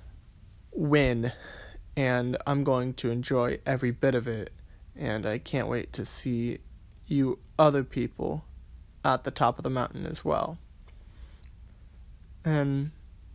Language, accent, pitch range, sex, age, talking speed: English, American, 90-130 Hz, male, 20-39, 125 wpm